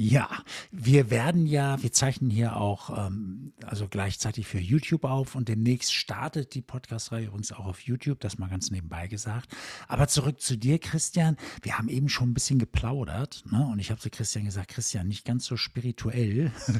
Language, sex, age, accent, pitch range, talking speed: German, male, 60-79, German, 105-125 Hz, 190 wpm